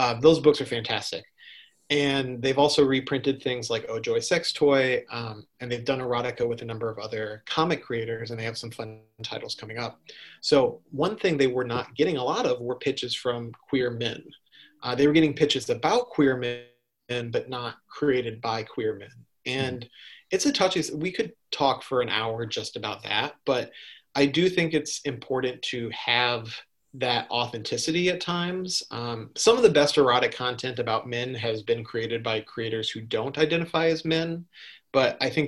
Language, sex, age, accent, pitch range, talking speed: English, male, 30-49, American, 115-150 Hz, 190 wpm